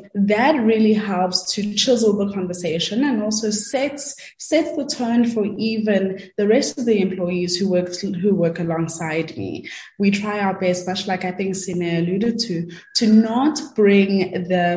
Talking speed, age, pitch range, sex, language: 165 wpm, 20-39, 170-205 Hz, female, English